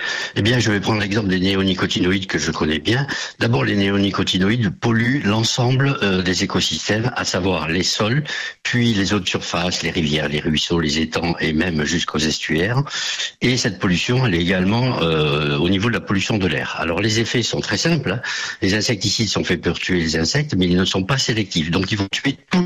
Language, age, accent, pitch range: French, 60-79, French, 85-115 Hz